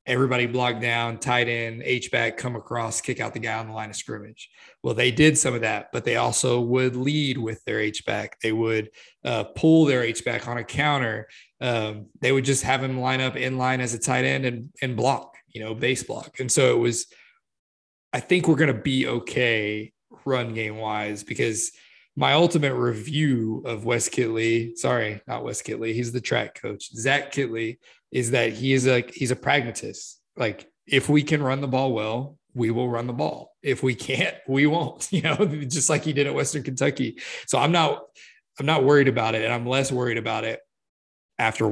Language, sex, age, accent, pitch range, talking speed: English, male, 20-39, American, 115-140 Hz, 210 wpm